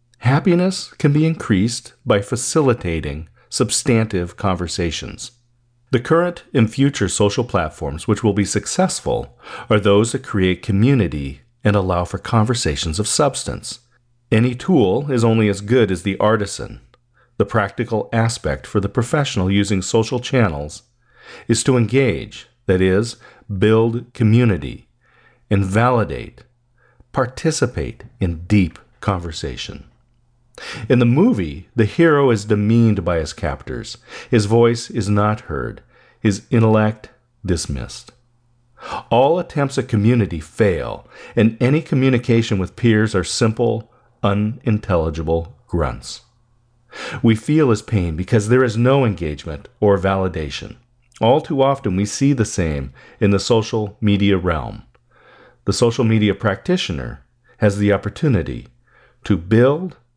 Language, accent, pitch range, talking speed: English, American, 100-120 Hz, 125 wpm